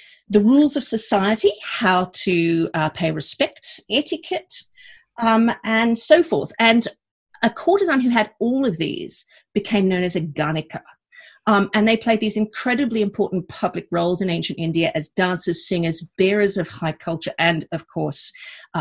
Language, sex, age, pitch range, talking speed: English, female, 40-59, 170-225 Hz, 155 wpm